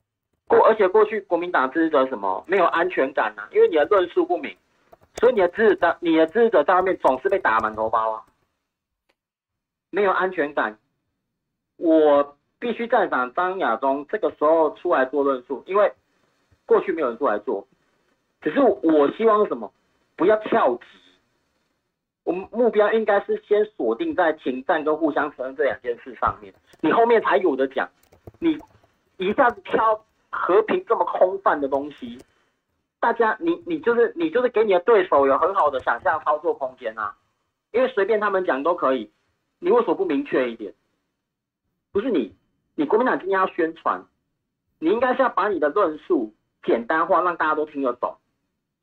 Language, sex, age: Chinese, male, 40-59